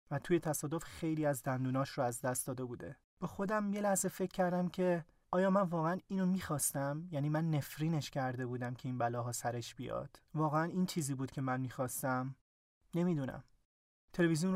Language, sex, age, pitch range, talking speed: Persian, male, 30-49, 130-160 Hz, 175 wpm